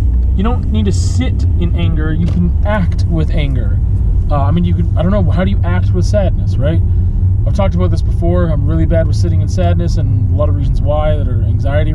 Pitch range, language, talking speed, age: 90-95 Hz, English, 240 wpm, 20-39